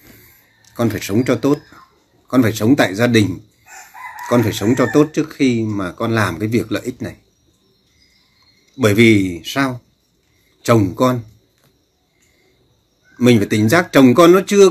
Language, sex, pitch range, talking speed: Vietnamese, male, 110-160 Hz, 160 wpm